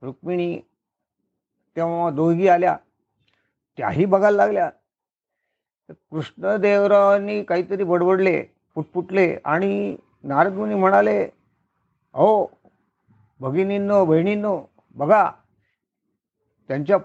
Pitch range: 140-200 Hz